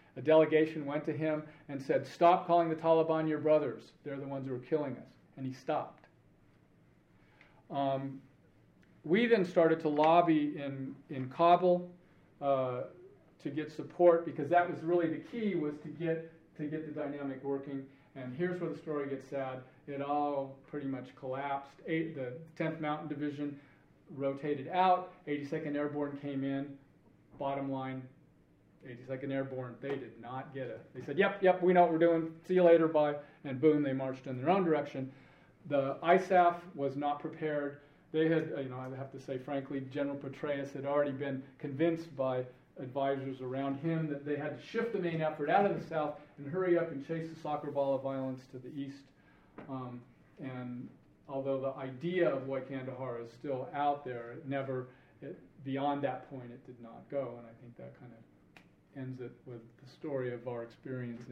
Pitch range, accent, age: 135-160 Hz, American, 40-59